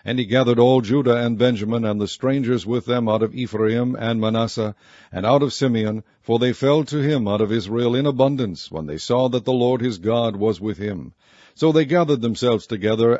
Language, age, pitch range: English, 60-79, 110-130 Hz